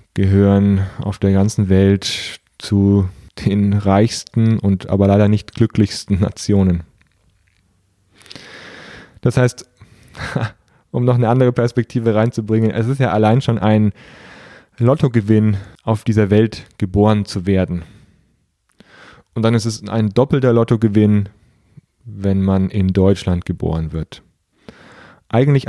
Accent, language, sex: German, German, male